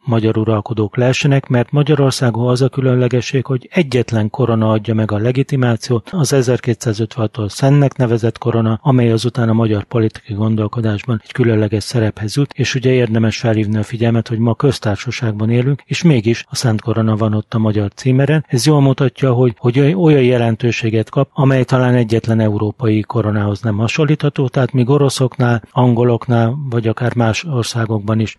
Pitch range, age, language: 110-130 Hz, 30-49, Hungarian